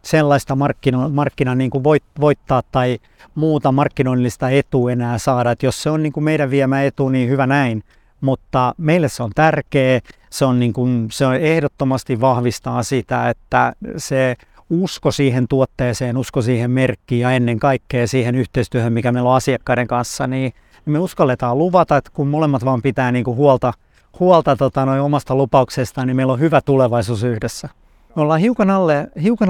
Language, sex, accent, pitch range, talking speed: Finnish, male, native, 125-145 Hz, 140 wpm